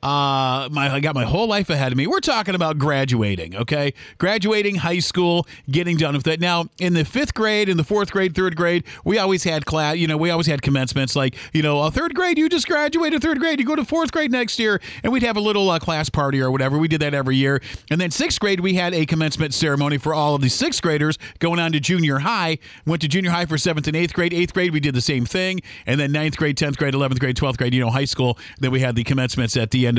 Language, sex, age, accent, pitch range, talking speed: English, male, 40-59, American, 140-180 Hz, 270 wpm